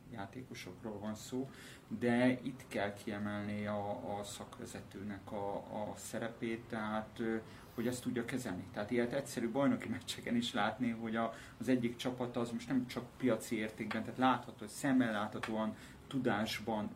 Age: 30-49